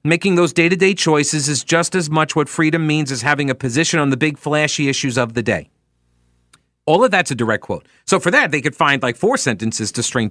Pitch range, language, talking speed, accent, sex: 110-180 Hz, English, 235 wpm, American, male